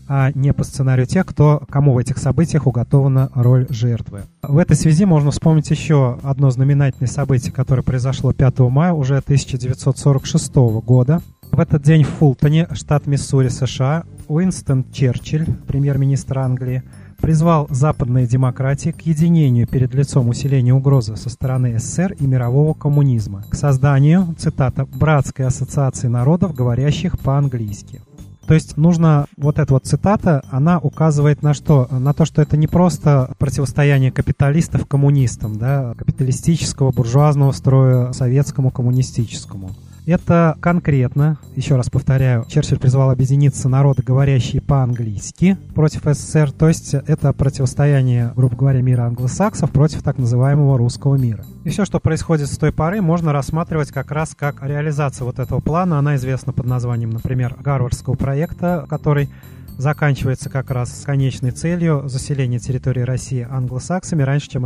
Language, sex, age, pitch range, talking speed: Russian, male, 30-49, 130-150 Hz, 140 wpm